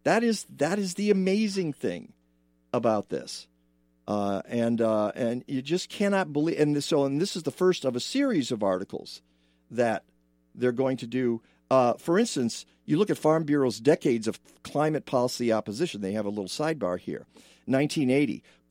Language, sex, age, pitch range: English, male, 50-69, 115-160 Hz